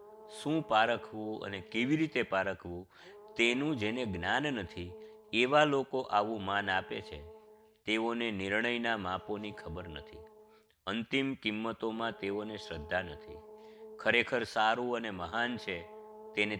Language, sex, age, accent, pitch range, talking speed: Gujarati, male, 50-69, native, 95-135 Hz, 60 wpm